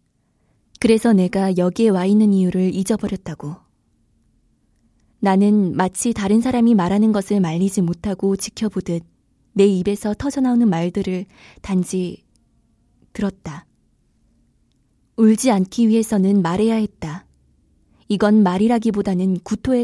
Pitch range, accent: 180-225 Hz, native